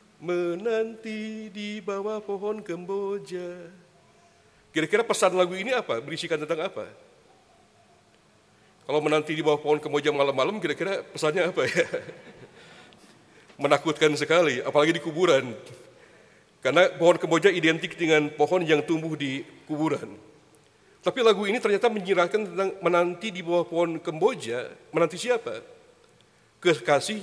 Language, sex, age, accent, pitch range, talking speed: Indonesian, male, 40-59, Malaysian, 155-205 Hz, 115 wpm